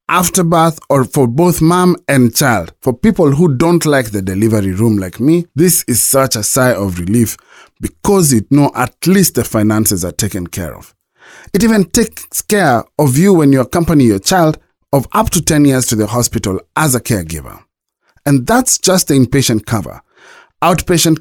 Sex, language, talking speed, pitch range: male, English, 185 wpm, 110-155 Hz